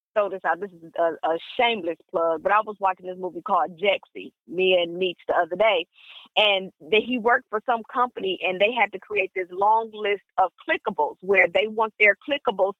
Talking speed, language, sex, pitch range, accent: 195 wpm, English, female, 200-255 Hz, American